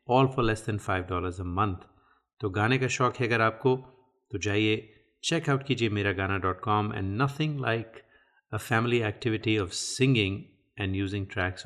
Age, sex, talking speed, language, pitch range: 30-49, male, 175 wpm, Hindi, 100-120 Hz